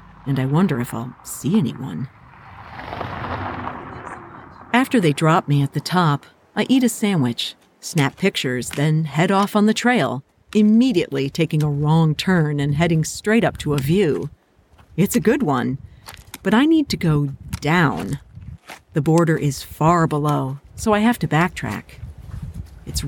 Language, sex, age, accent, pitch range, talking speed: English, female, 50-69, American, 135-190 Hz, 155 wpm